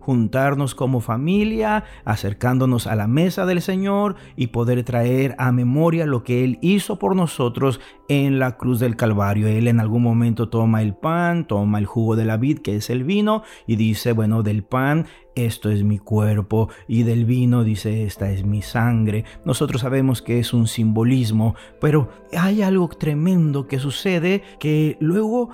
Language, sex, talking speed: Spanish, male, 170 wpm